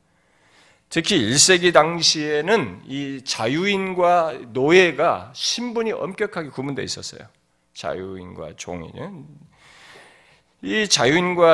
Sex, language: male, Korean